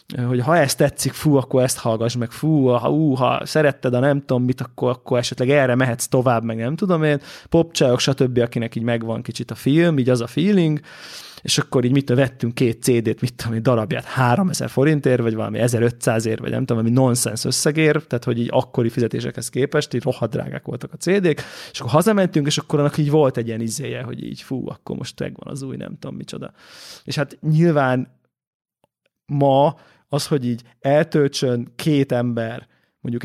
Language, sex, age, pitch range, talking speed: Hungarian, male, 20-39, 120-145 Hz, 195 wpm